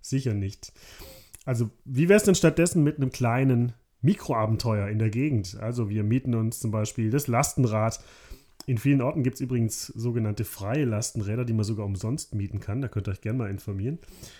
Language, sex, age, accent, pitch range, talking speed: German, male, 30-49, German, 110-140 Hz, 190 wpm